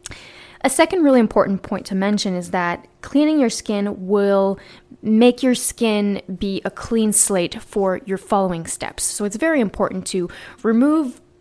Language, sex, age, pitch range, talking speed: English, female, 10-29, 195-255 Hz, 160 wpm